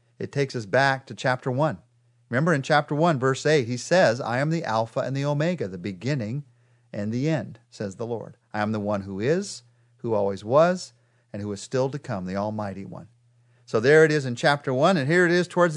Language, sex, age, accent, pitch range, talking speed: English, male, 40-59, American, 115-145 Hz, 230 wpm